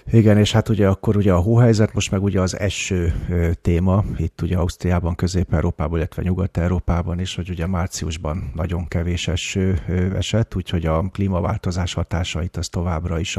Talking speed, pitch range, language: 155 wpm, 85-100 Hz, Hungarian